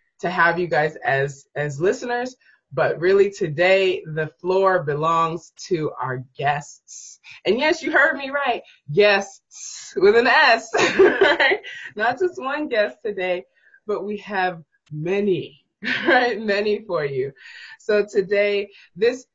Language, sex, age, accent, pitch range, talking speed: English, female, 20-39, American, 165-230 Hz, 130 wpm